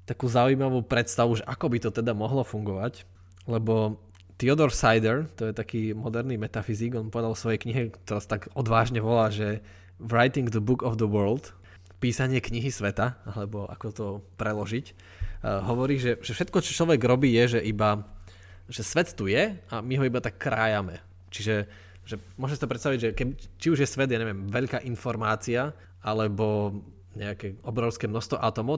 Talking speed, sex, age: 175 wpm, male, 20-39